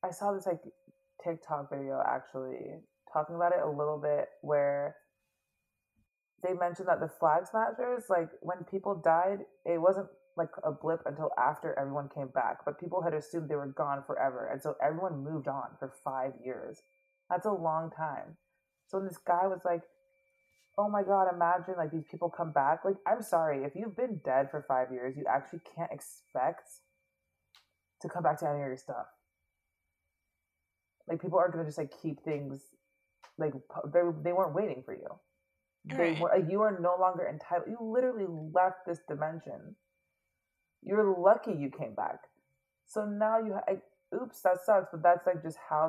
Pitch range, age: 135-190 Hz, 20-39